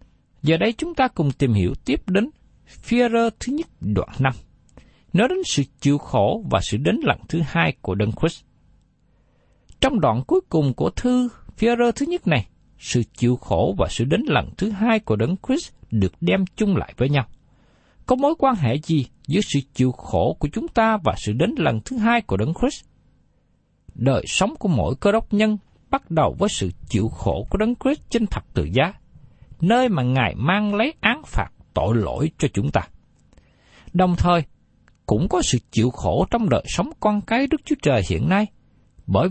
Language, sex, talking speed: Vietnamese, male, 190 wpm